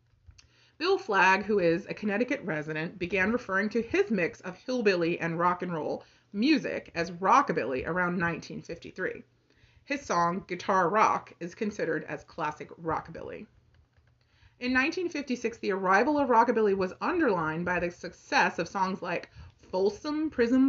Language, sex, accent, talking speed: English, female, American, 140 wpm